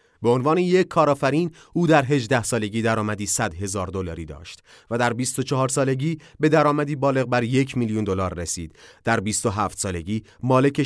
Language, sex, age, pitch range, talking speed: Persian, male, 30-49, 100-145 Hz, 160 wpm